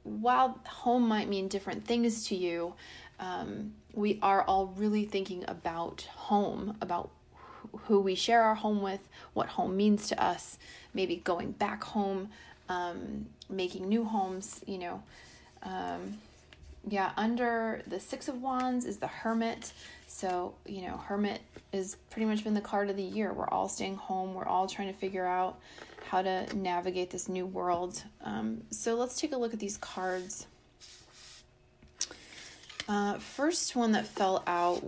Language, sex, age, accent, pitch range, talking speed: English, female, 30-49, American, 185-220 Hz, 160 wpm